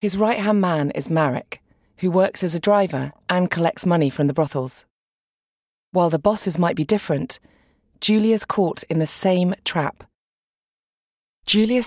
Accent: British